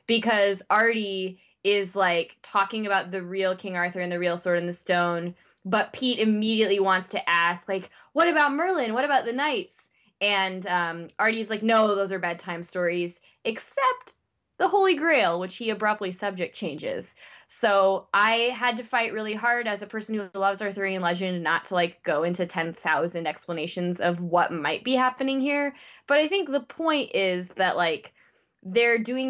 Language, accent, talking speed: English, American, 175 wpm